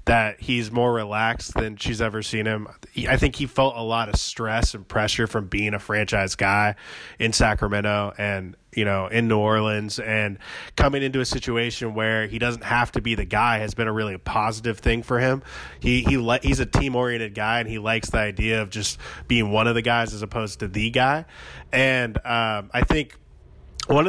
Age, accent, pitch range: 20-39, American, 105-120 Hz